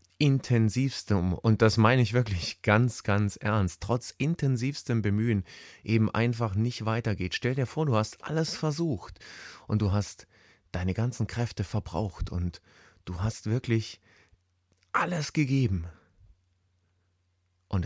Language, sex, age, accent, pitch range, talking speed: German, male, 30-49, German, 90-115 Hz, 125 wpm